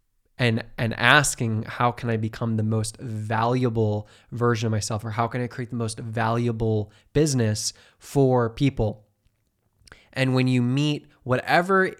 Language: English